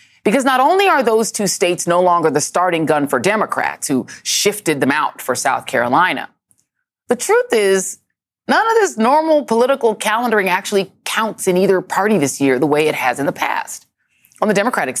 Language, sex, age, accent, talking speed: English, female, 30-49, American, 190 wpm